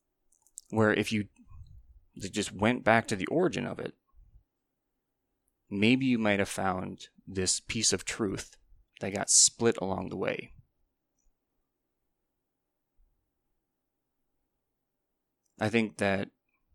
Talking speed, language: 105 wpm, English